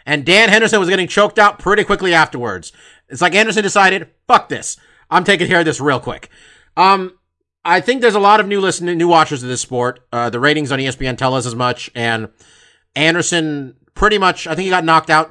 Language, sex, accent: English, male, American